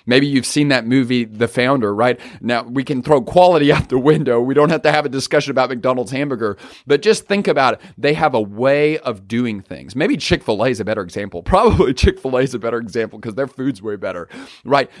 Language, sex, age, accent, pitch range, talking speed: English, male, 40-59, American, 120-160 Hz, 225 wpm